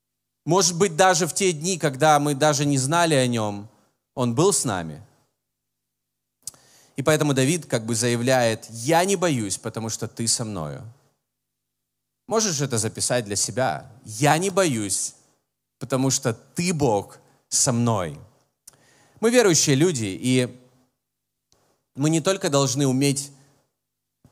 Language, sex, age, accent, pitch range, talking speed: Russian, male, 30-49, native, 115-140 Hz, 135 wpm